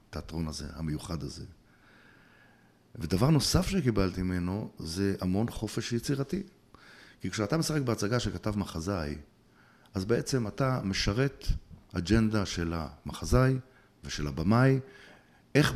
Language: Hebrew